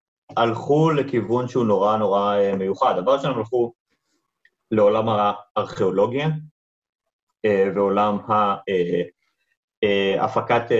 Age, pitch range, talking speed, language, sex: 30-49, 105-145 Hz, 80 wpm, Hebrew, male